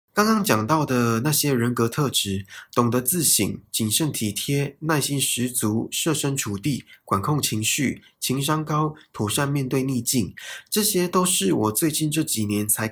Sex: male